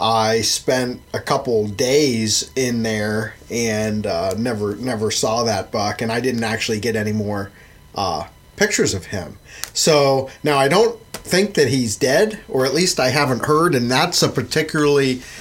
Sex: male